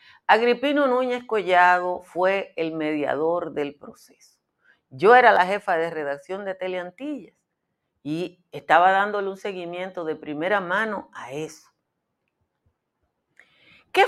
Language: Spanish